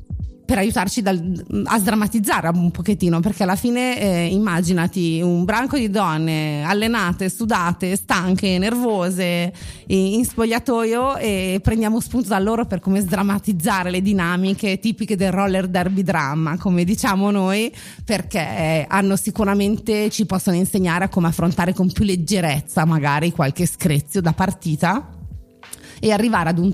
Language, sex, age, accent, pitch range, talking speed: Italian, female, 30-49, native, 165-200 Hz, 140 wpm